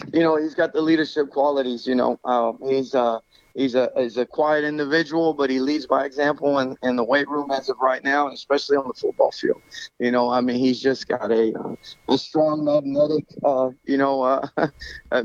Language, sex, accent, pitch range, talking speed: English, male, American, 125-145 Hz, 215 wpm